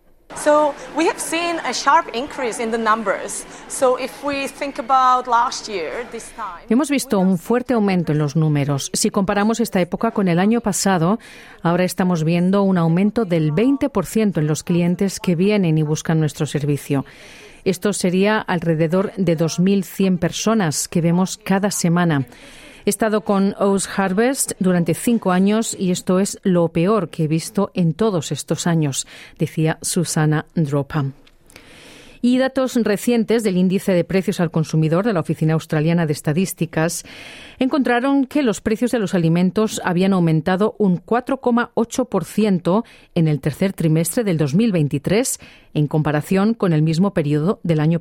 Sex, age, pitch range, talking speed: female, 40-59, 165-225 Hz, 130 wpm